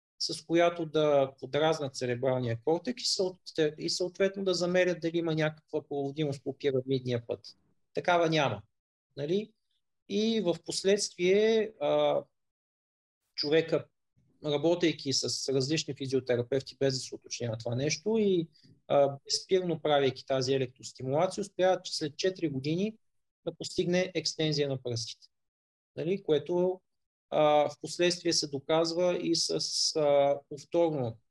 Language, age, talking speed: Bulgarian, 30-49, 115 wpm